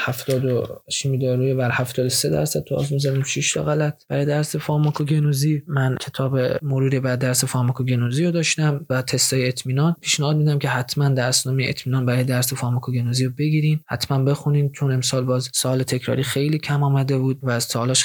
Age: 20-39